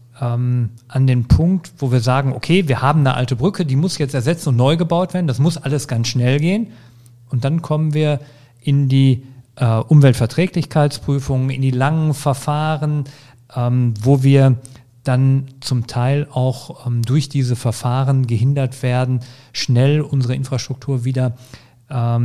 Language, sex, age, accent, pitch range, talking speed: German, male, 40-59, German, 120-145 Hz, 140 wpm